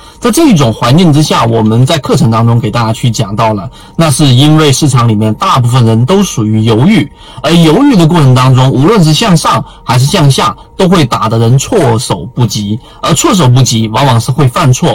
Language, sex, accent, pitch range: Chinese, male, native, 115-155 Hz